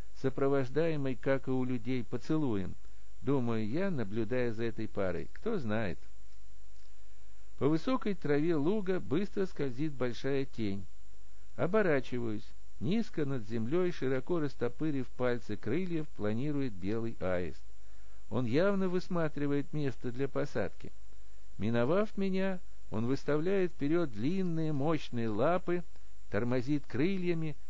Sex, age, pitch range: male, 60-79, 100-150 Hz